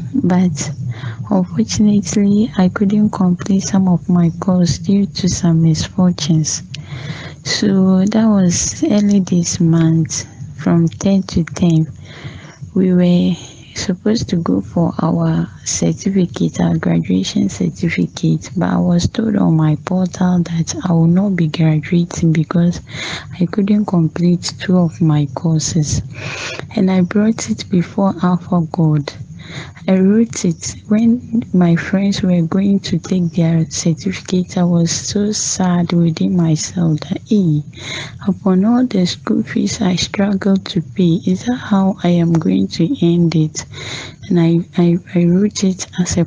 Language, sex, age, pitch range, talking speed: English, female, 20-39, 160-195 Hz, 140 wpm